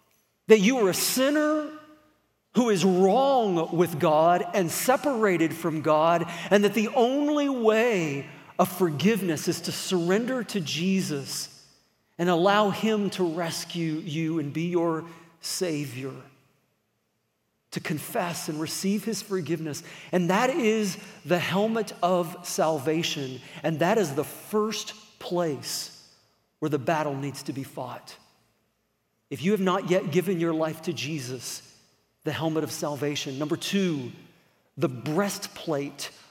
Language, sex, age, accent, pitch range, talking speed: English, male, 40-59, American, 150-205 Hz, 130 wpm